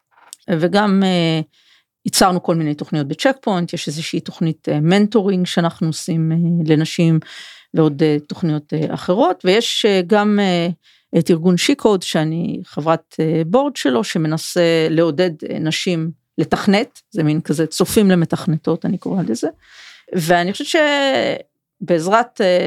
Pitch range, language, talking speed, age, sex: 155-200 Hz, Hebrew, 110 wpm, 40-59, female